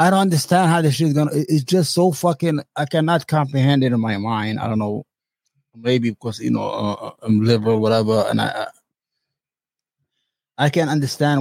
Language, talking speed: English, 190 wpm